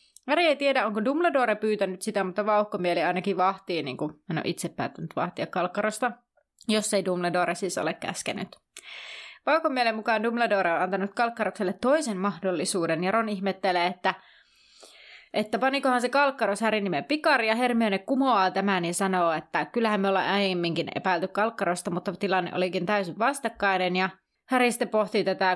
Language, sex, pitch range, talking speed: Finnish, female, 180-230 Hz, 155 wpm